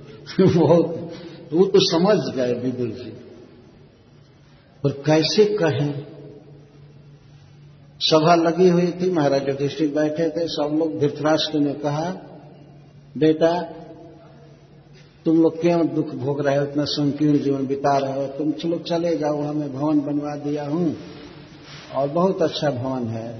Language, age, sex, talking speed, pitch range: Hindi, 60-79, male, 135 wpm, 140-165 Hz